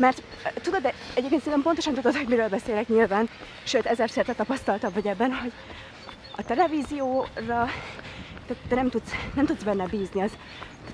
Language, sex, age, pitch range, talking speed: Hungarian, female, 20-39, 210-260 Hz, 155 wpm